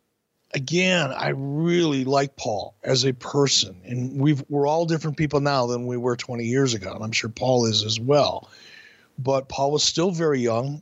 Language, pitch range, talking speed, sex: English, 125-160 Hz, 185 wpm, male